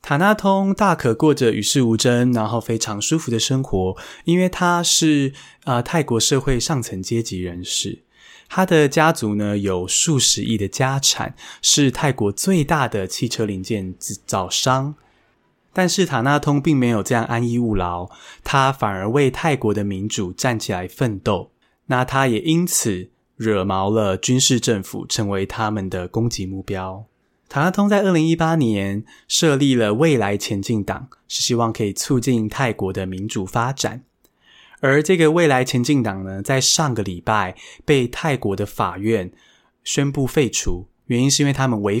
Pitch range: 105-140 Hz